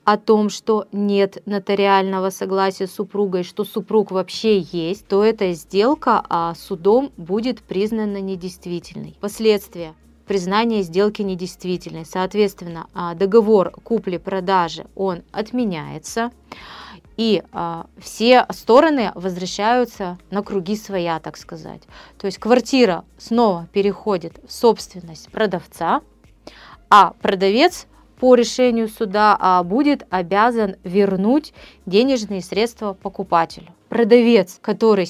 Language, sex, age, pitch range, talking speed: Russian, female, 30-49, 185-225 Hz, 100 wpm